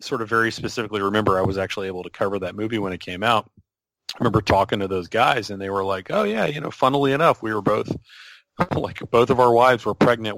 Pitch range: 95-115 Hz